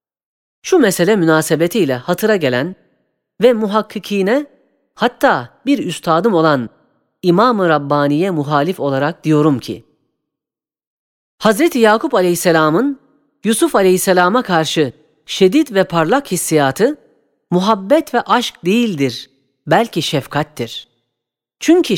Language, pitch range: Turkish, 150-220 Hz